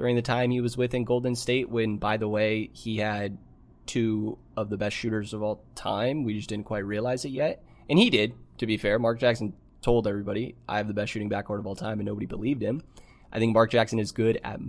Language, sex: English, male